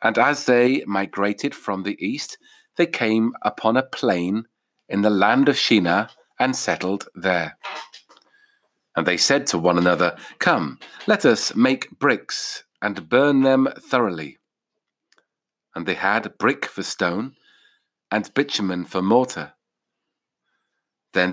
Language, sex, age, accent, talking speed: English, male, 40-59, British, 130 wpm